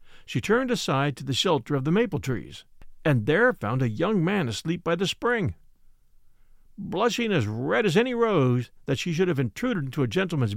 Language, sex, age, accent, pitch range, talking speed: English, male, 50-69, American, 120-195 Hz, 195 wpm